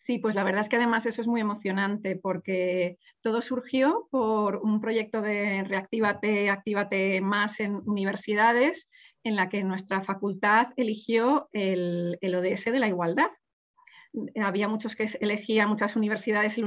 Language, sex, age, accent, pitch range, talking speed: Spanish, female, 20-39, Spanish, 195-235 Hz, 150 wpm